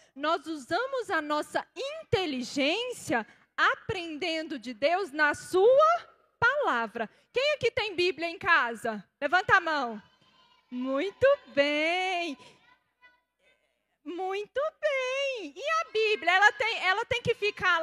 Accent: Brazilian